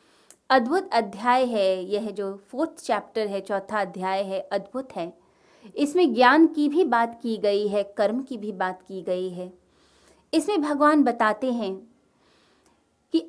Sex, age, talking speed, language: female, 20-39, 150 wpm, Hindi